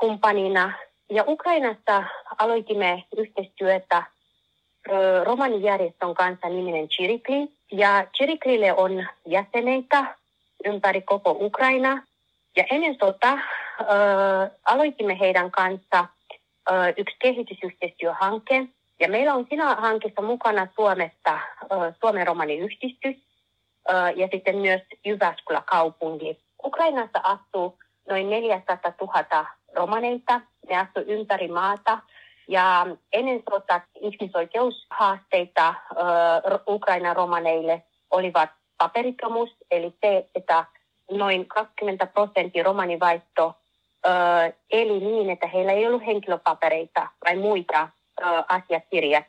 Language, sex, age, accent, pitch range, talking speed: Finnish, female, 30-49, native, 175-220 Hz, 90 wpm